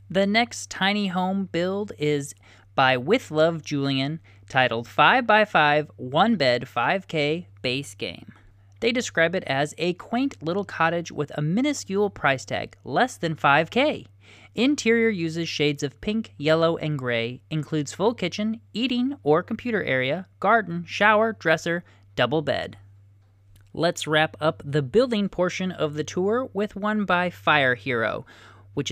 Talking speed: 145 wpm